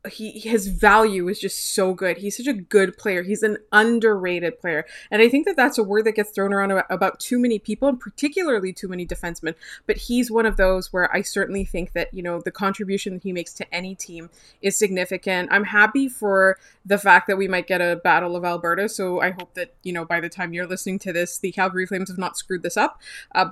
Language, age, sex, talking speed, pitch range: English, 20-39, female, 235 wpm, 185-225 Hz